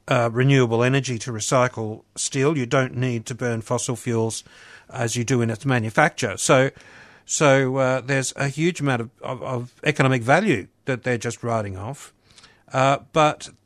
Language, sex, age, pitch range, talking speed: English, male, 60-79, 120-140 Hz, 165 wpm